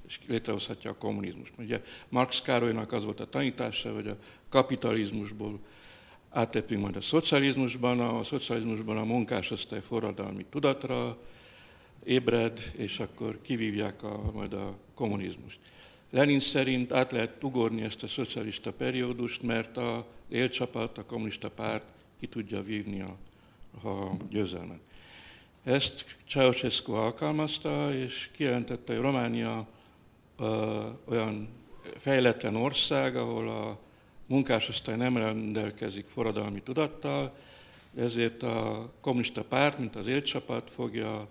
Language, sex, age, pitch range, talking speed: Hungarian, male, 60-79, 105-130 Hz, 110 wpm